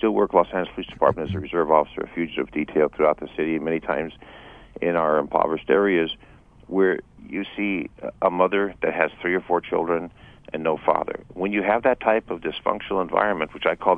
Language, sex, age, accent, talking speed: English, male, 50-69, American, 200 wpm